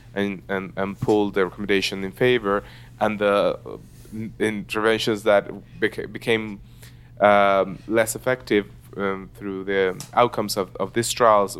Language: English